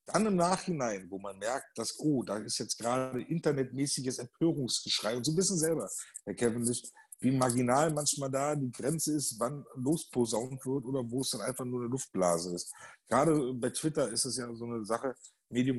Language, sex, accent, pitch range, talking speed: German, male, German, 120-150 Hz, 195 wpm